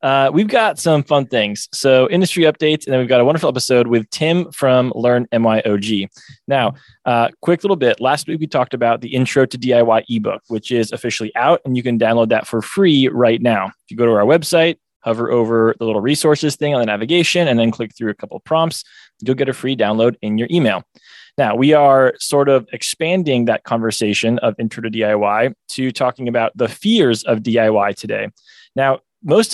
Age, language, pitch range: 20-39, English, 115-145 Hz